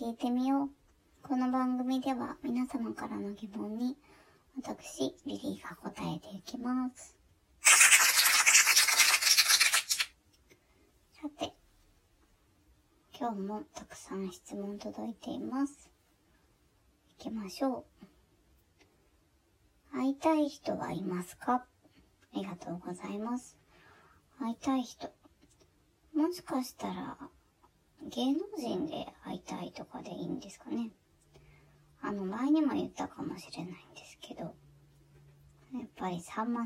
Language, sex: Japanese, male